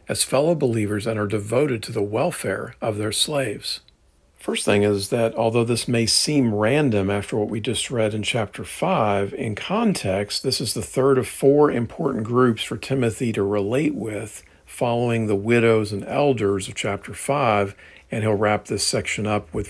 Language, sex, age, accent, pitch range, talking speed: English, male, 50-69, American, 100-120 Hz, 180 wpm